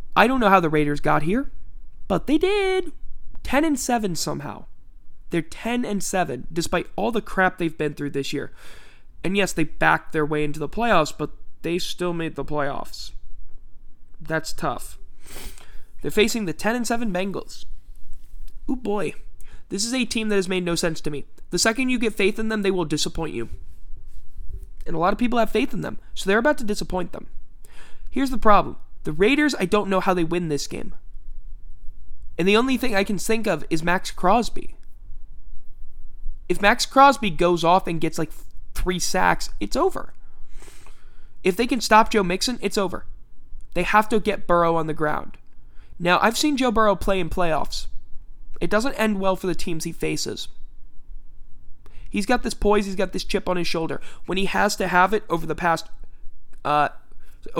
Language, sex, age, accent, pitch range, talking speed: English, male, 20-39, American, 155-215 Hz, 180 wpm